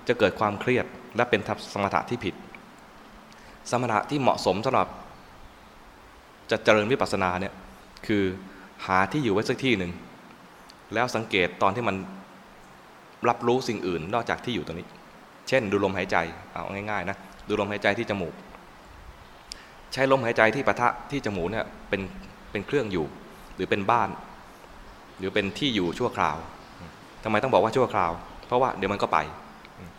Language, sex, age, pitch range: English, male, 20-39, 95-120 Hz